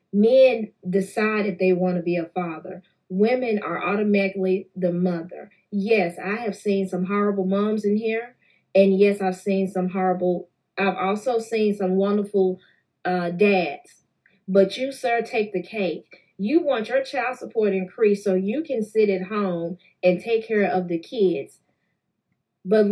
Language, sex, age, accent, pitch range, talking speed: English, female, 30-49, American, 185-220 Hz, 160 wpm